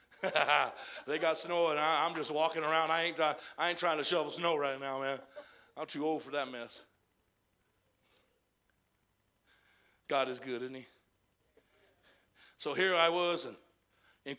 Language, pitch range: English, 170-230 Hz